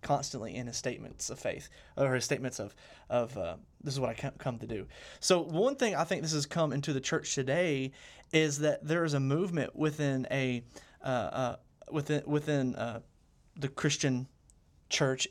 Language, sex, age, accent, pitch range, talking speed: English, male, 30-49, American, 130-155 Hz, 185 wpm